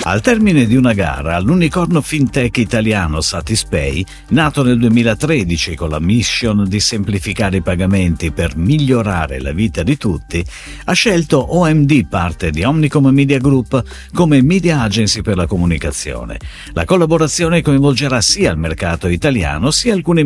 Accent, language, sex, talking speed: native, Italian, male, 140 wpm